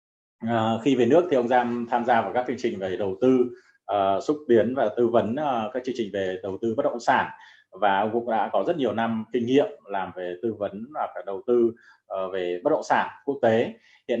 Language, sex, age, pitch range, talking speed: Vietnamese, male, 20-39, 100-130 Hz, 240 wpm